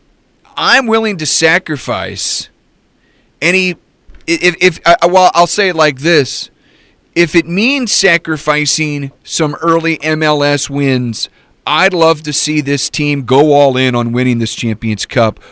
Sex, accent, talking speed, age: male, American, 140 wpm, 30-49